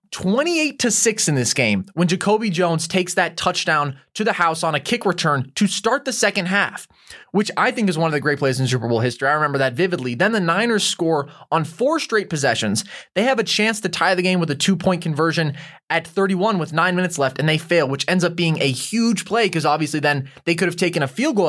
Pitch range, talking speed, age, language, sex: 150-195 Hz, 245 wpm, 20-39, English, male